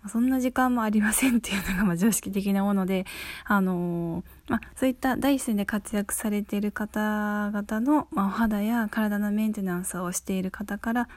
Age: 20-39